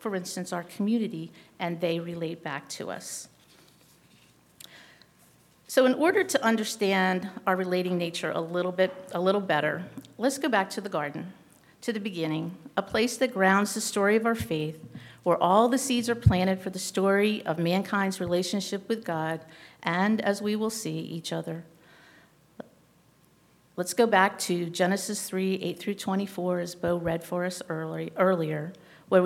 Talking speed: 165 wpm